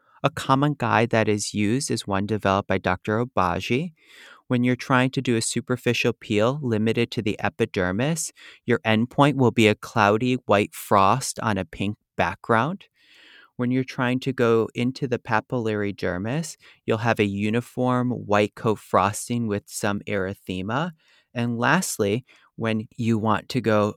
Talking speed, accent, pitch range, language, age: 155 wpm, American, 100-130 Hz, English, 30-49